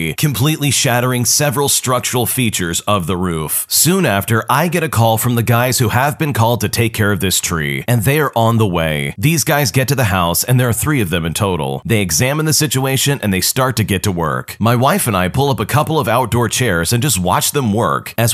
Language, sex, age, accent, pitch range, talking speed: English, male, 30-49, American, 100-135 Hz, 245 wpm